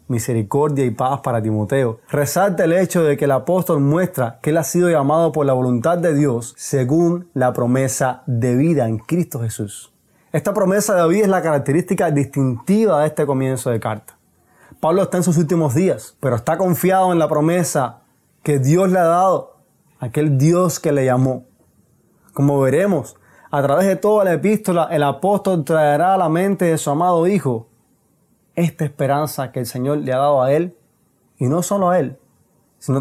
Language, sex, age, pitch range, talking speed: Spanish, male, 20-39, 130-175 Hz, 180 wpm